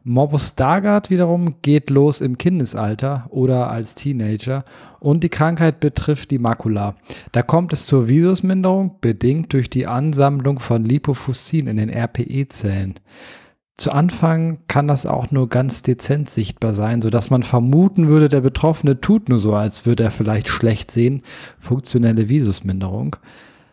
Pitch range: 115-150 Hz